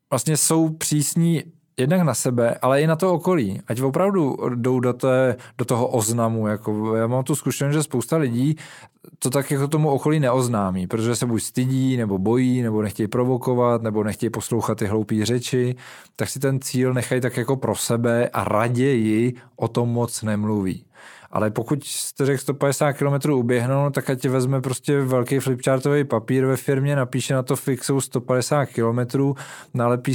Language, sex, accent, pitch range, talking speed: Czech, male, native, 120-140 Hz, 175 wpm